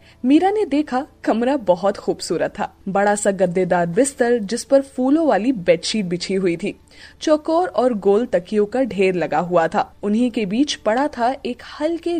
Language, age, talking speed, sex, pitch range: Hindi, 20-39, 170 wpm, female, 195-280 Hz